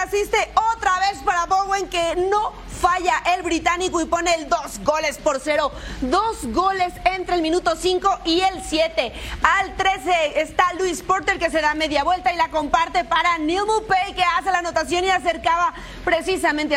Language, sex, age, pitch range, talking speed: Spanish, female, 30-49, 310-370 Hz, 175 wpm